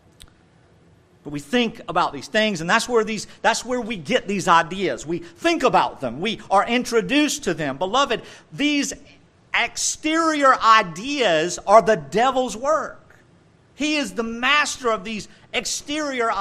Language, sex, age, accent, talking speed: English, male, 50-69, American, 135 wpm